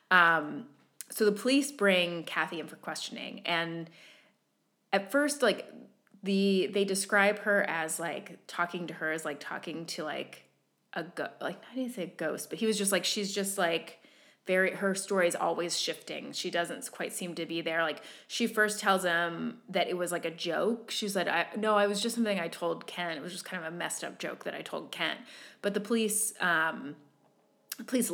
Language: English